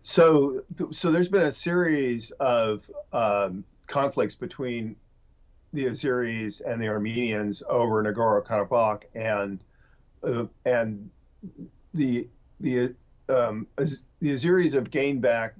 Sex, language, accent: male, English, American